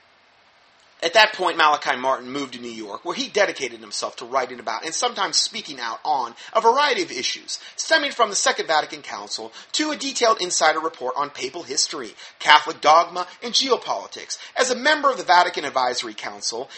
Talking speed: 180 wpm